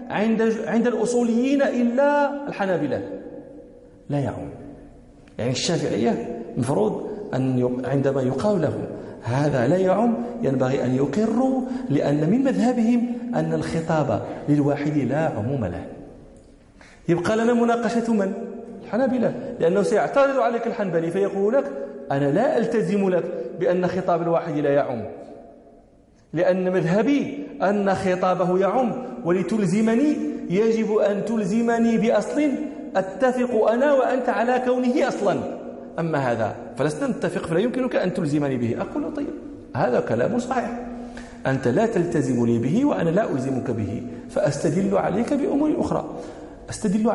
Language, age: Danish, 40-59